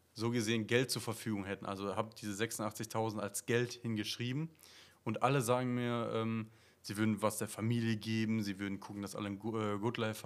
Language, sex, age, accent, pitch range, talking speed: German, male, 30-49, German, 105-125 Hz, 195 wpm